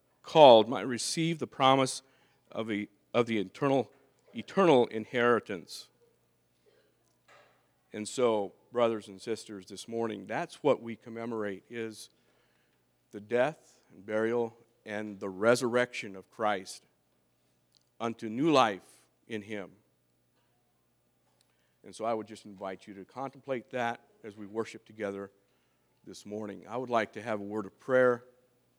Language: English